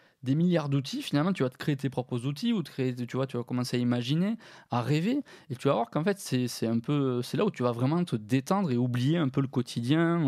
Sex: male